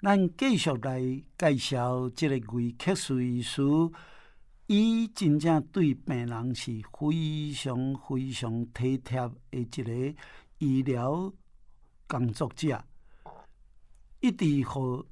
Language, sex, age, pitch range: Chinese, male, 60-79, 125-160 Hz